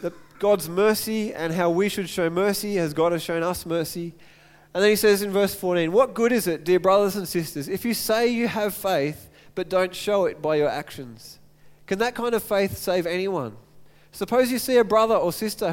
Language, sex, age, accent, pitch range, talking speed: English, male, 20-39, Australian, 170-220 Hz, 215 wpm